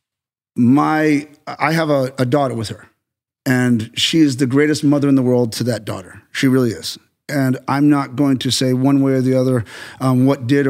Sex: male